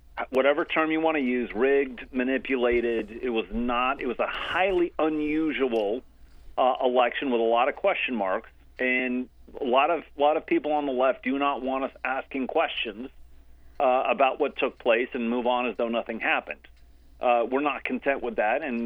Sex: male